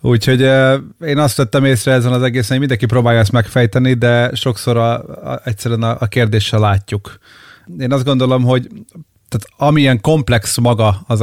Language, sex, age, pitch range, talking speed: Hungarian, male, 30-49, 105-125 Hz, 170 wpm